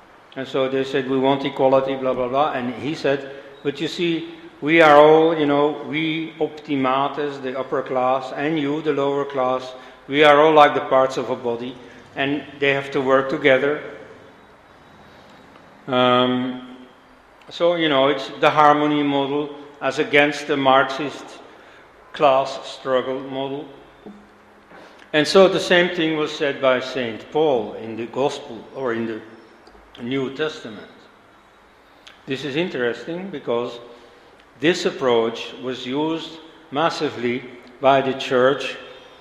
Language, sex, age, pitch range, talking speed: English, male, 60-79, 130-155 Hz, 140 wpm